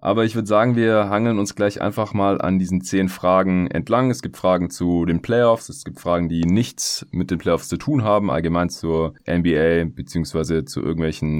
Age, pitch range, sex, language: 20-39, 80-105 Hz, male, German